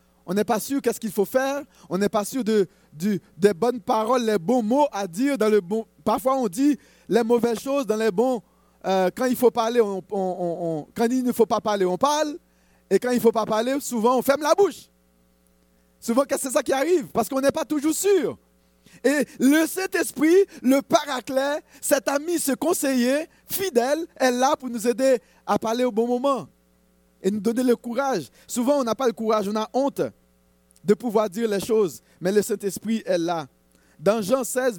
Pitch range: 200-270 Hz